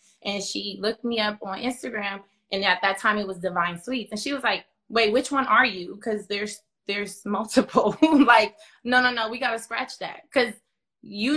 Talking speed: 200 wpm